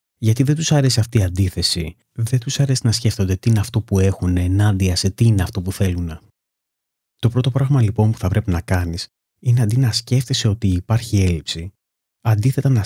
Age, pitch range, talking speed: 30-49, 95-120 Hz, 195 wpm